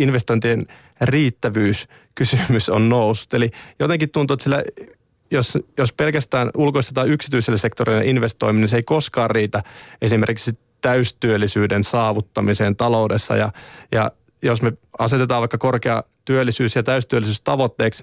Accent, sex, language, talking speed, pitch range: native, male, Finnish, 120 wpm, 110-125 Hz